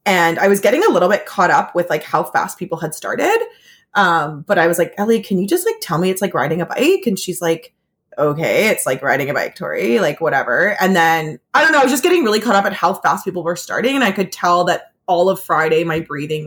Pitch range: 155-200 Hz